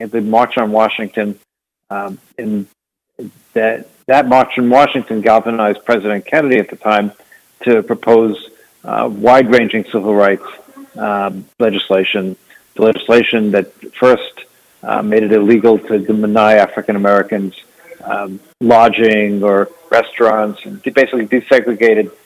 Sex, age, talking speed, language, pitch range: male, 50-69, 120 wpm, English, 100-115 Hz